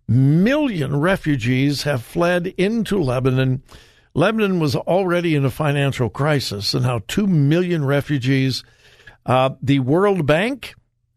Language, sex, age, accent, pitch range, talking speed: English, male, 60-79, American, 130-185 Hz, 120 wpm